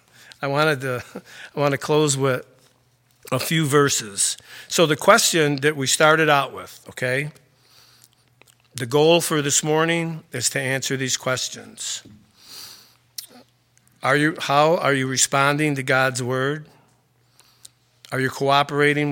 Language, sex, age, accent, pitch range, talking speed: English, male, 50-69, American, 125-150 Hz, 130 wpm